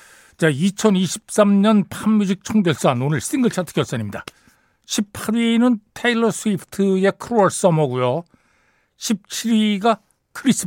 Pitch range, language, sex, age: 140-205 Hz, Korean, male, 60-79